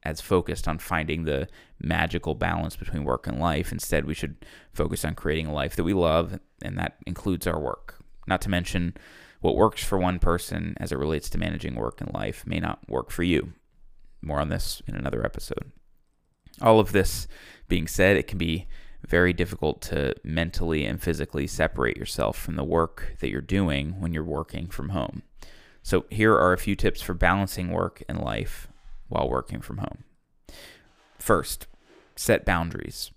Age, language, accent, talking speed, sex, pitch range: 20-39, English, American, 180 wpm, male, 80-95 Hz